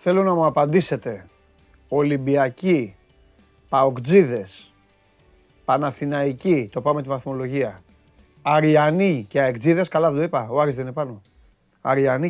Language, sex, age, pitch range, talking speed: Greek, male, 30-49, 125-195 Hz, 115 wpm